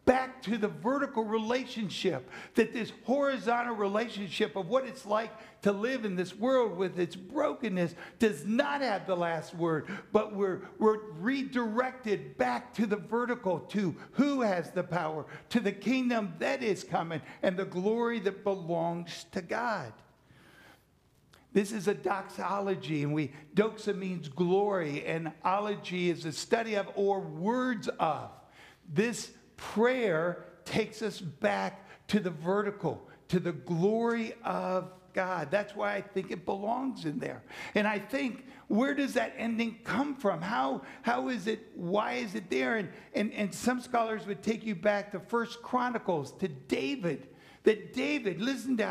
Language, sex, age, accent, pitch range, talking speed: English, male, 60-79, American, 185-235 Hz, 155 wpm